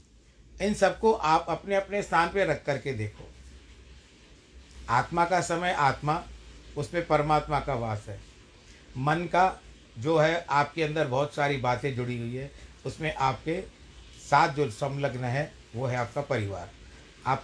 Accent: native